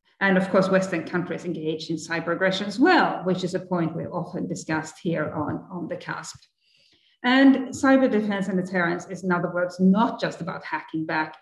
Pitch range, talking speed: 175-210 Hz, 195 wpm